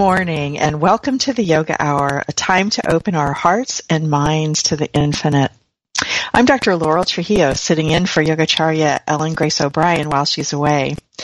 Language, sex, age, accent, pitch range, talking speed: English, female, 50-69, American, 150-190 Hz, 175 wpm